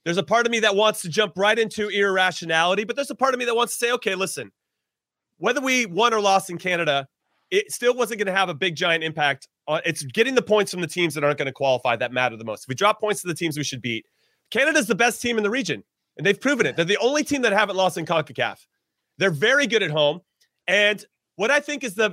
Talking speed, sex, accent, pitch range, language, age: 265 wpm, male, American, 165-235 Hz, English, 30-49